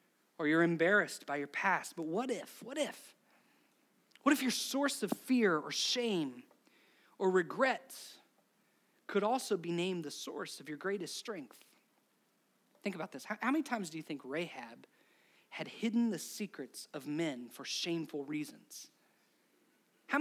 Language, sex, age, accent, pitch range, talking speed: English, male, 30-49, American, 195-275 Hz, 155 wpm